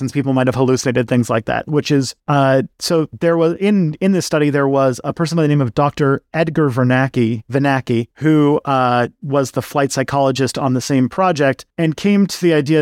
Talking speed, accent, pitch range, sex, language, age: 200 wpm, American, 140-175 Hz, male, English, 30-49